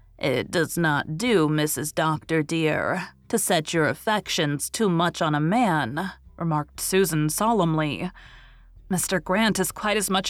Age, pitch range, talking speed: 30-49, 155-210 Hz, 145 wpm